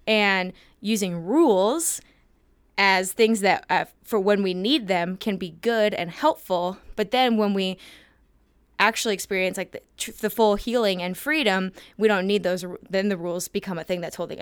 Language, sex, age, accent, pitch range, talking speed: English, female, 20-39, American, 180-210 Hz, 185 wpm